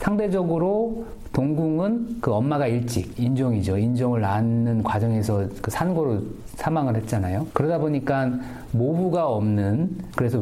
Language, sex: Korean, male